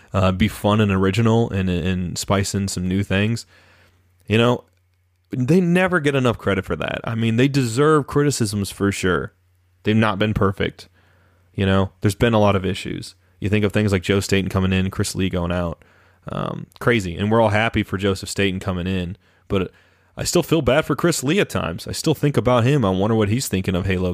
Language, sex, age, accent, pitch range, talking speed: English, male, 20-39, American, 95-130 Hz, 215 wpm